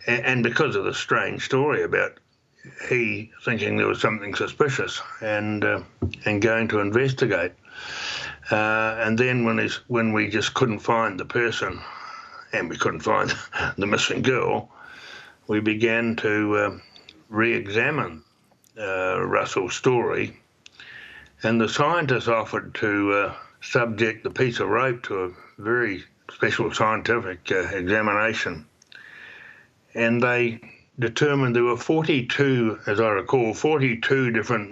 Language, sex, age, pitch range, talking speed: English, male, 60-79, 110-140 Hz, 130 wpm